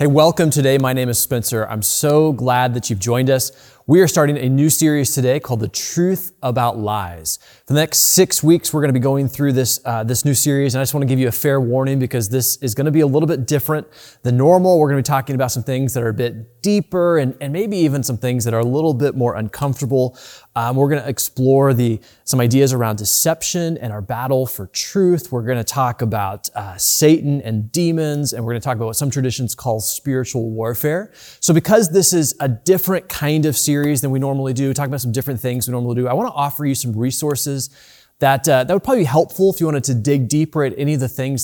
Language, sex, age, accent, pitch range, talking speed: English, male, 20-39, American, 125-150 Hz, 250 wpm